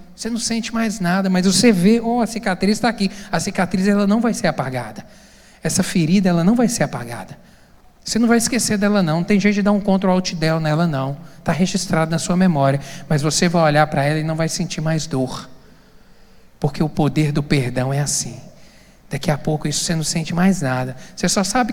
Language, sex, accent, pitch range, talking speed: Portuguese, male, Brazilian, 160-200 Hz, 220 wpm